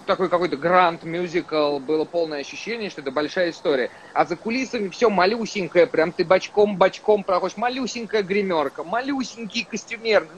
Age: 30-49